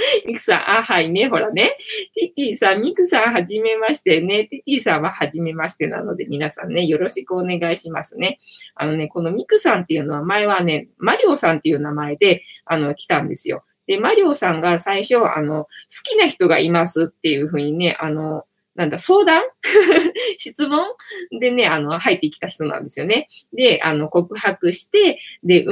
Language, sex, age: Japanese, female, 20-39